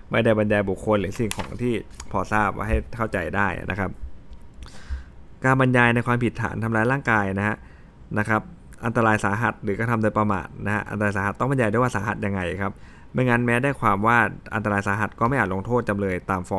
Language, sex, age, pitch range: Thai, male, 20-39, 100-115 Hz